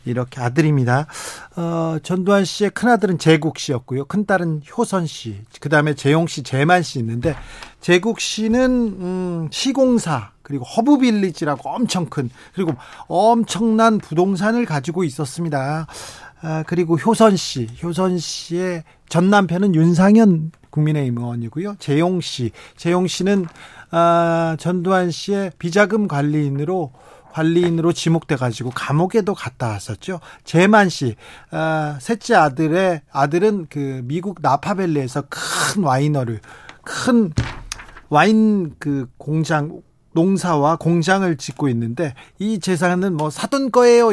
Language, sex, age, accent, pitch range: Korean, male, 40-59, native, 145-190 Hz